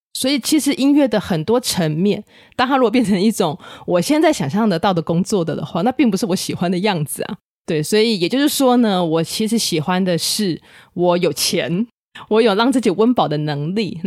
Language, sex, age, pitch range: Chinese, female, 20-39, 165-220 Hz